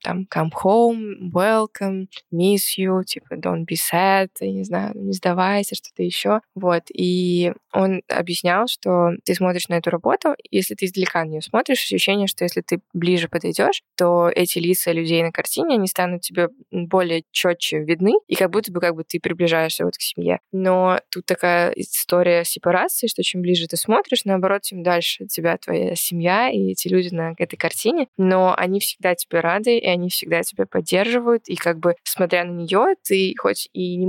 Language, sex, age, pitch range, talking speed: Russian, female, 20-39, 170-190 Hz, 185 wpm